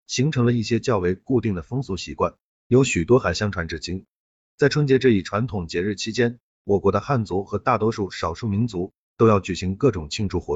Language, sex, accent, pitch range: Chinese, male, native, 95-125 Hz